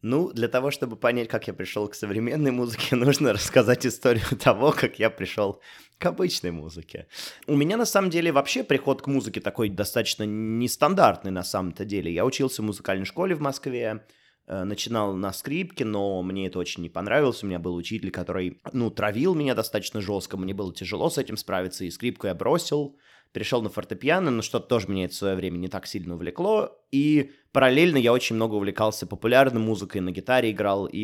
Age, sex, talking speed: 20-39, male, 195 wpm